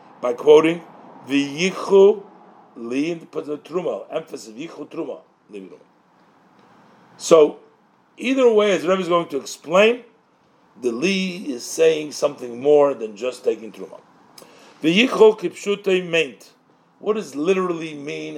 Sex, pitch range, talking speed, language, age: male, 150-200 Hz, 125 wpm, English, 50-69